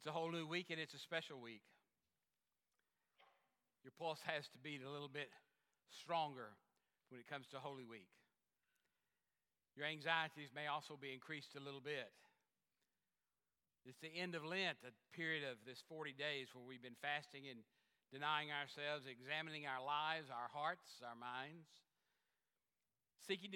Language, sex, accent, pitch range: English, male, American, 130-160 Hz